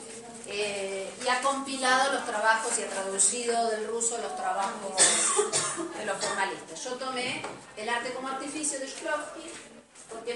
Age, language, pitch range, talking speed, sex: 30-49, Spanish, 185-255 Hz, 150 wpm, female